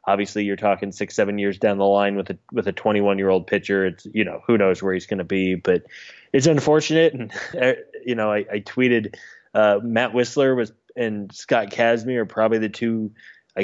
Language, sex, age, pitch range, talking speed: English, male, 20-39, 100-115 Hz, 210 wpm